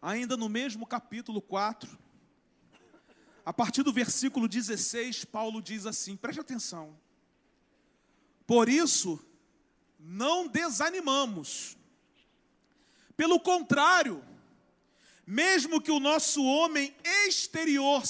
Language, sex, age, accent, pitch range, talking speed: Portuguese, male, 40-59, Brazilian, 250-320 Hz, 90 wpm